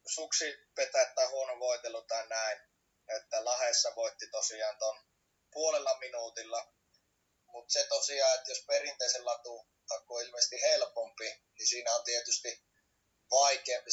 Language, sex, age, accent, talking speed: Finnish, male, 20-39, native, 120 wpm